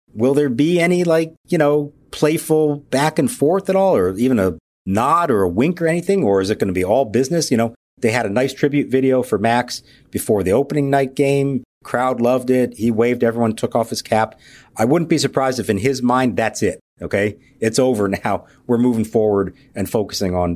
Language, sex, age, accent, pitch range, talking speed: English, male, 50-69, American, 115-155 Hz, 220 wpm